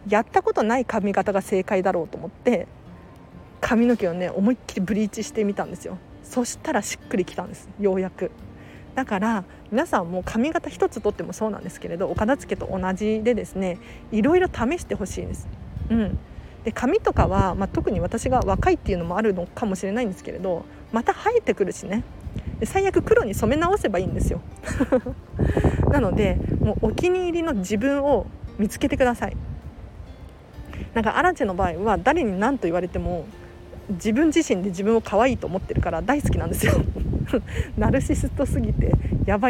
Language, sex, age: Japanese, female, 40-59